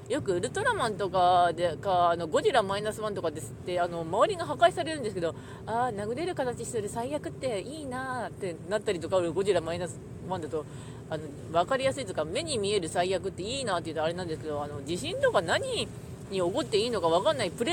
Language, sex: Japanese, female